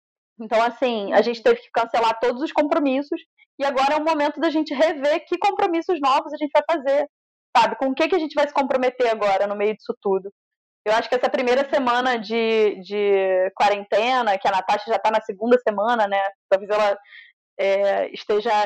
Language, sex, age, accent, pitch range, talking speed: Portuguese, female, 20-39, Brazilian, 220-300 Hz, 200 wpm